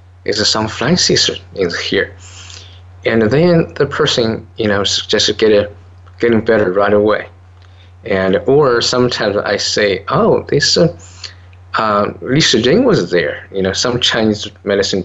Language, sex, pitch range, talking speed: English, male, 95-125 Hz, 145 wpm